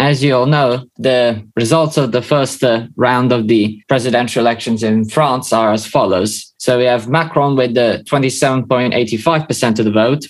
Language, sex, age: English, male, 20-39